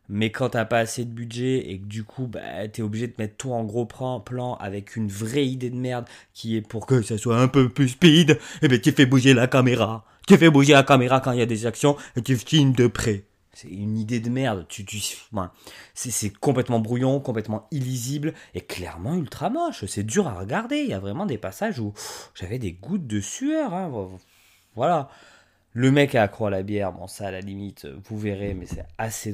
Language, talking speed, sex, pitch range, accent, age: French, 220 wpm, male, 105-140 Hz, French, 20-39